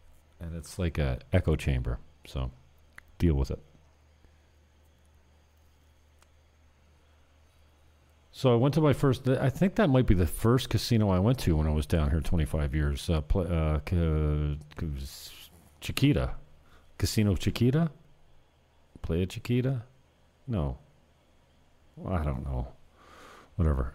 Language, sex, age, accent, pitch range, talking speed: English, male, 40-59, American, 75-95 Hz, 130 wpm